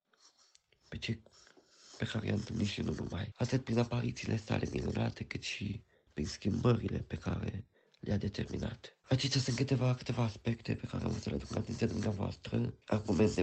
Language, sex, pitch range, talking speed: Romanian, male, 105-120 Hz, 160 wpm